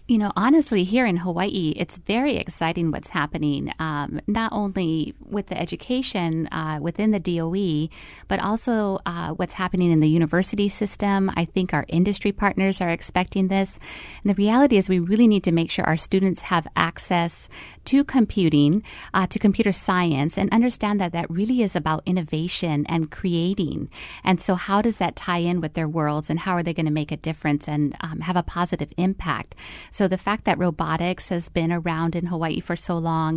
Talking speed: 190 wpm